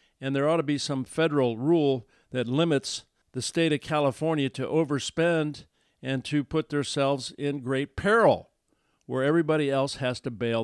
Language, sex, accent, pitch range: English, male, American, 125-160 Hz